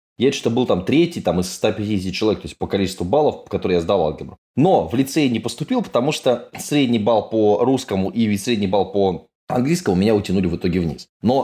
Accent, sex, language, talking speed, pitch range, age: native, male, Russian, 210 wpm, 100-155 Hz, 20-39